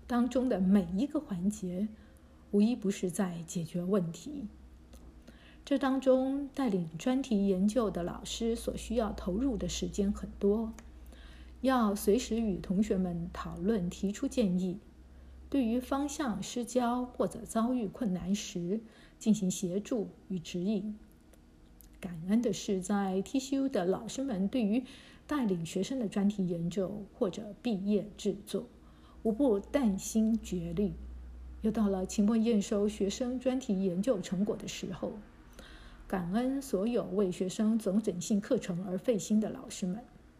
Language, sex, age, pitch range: Chinese, female, 50-69, 190-235 Hz